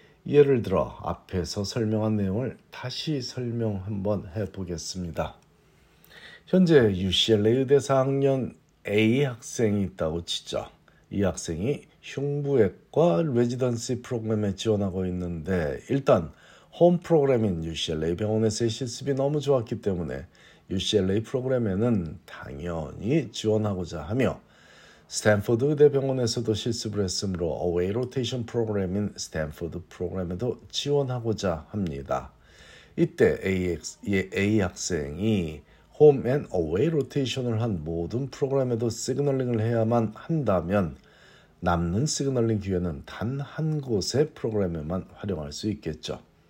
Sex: male